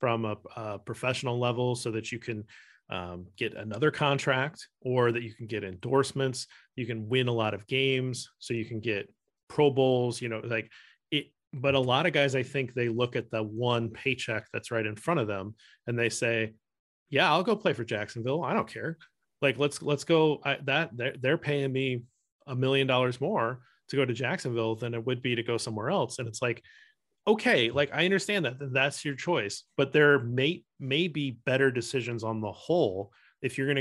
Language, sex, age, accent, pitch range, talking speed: English, male, 30-49, American, 115-135 Hz, 205 wpm